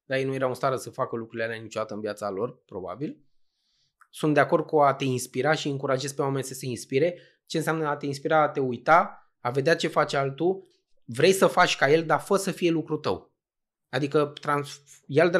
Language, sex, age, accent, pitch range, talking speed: Romanian, male, 20-39, native, 130-155 Hz, 220 wpm